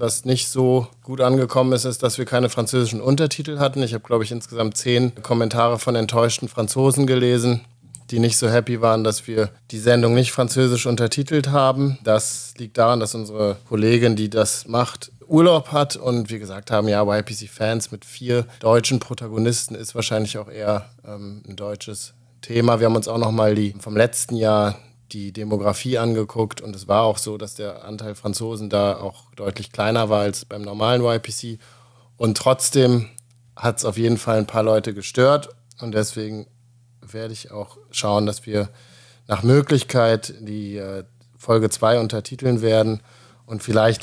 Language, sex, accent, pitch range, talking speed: German, male, German, 110-125 Hz, 170 wpm